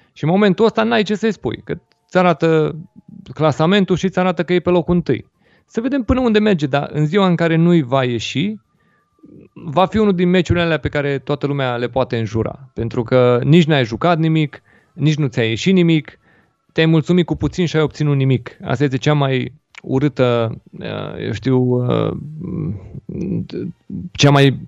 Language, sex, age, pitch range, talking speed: Romanian, male, 30-49, 120-165 Hz, 175 wpm